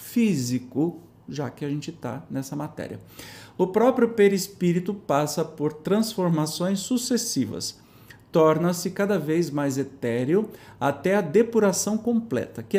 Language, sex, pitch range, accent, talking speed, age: Portuguese, male, 145-205 Hz, Brazilian, 115 wpm, 40-59